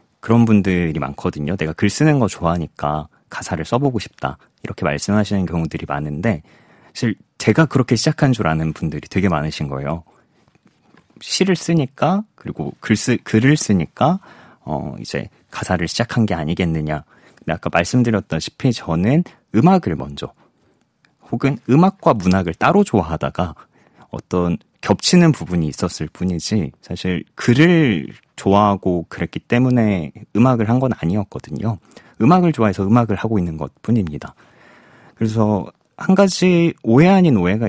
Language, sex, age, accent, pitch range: Korean, male, 30-49, native, 85-135 Hz